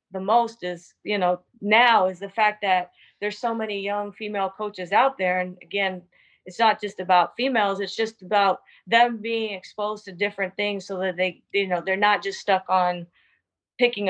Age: 30-49